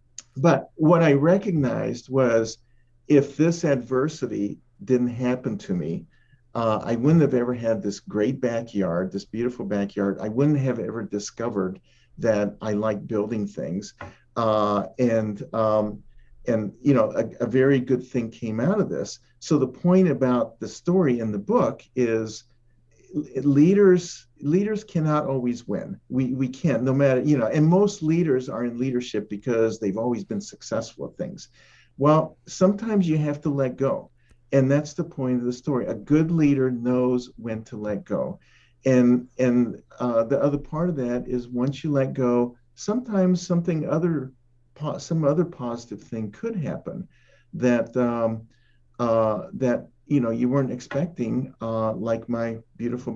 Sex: male